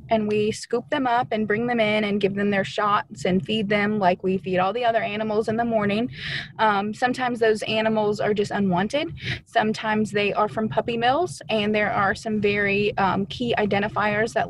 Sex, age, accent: female, 20-39, American